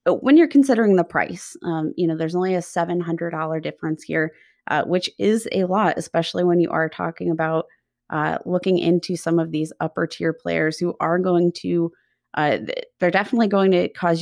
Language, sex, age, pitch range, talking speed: English, female, 20-39, 165-195 Hz, 185 wpm